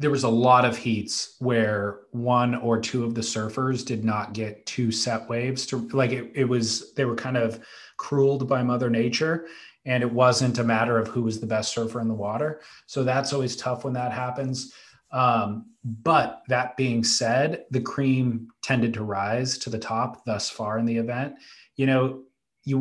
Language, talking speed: English, 195 wpm